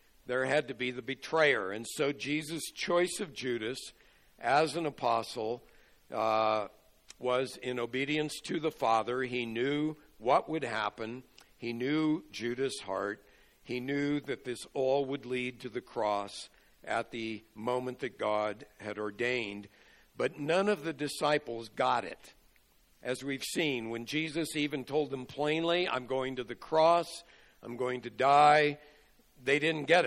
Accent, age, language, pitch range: American, 60-79, English, 120-150 Hz